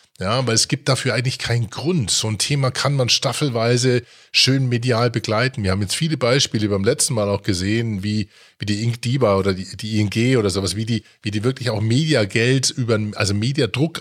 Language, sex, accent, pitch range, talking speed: German, male, German, 105-135 Hz, 200 wpm